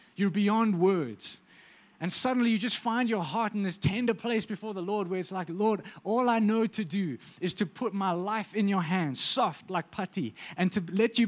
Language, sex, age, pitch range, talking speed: English, male, 20-39, 180-220 Hz, 220 wpm